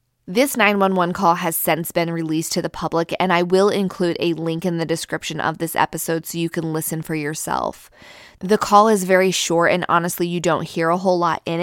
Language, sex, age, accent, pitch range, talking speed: English, female, 20-39, American, 160-195 Hz, 215 wpm